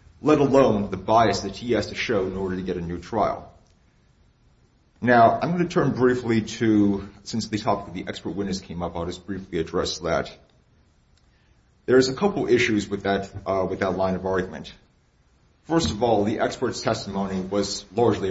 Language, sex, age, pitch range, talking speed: English, male, 40-59, 95-115 Hz, 190 wpm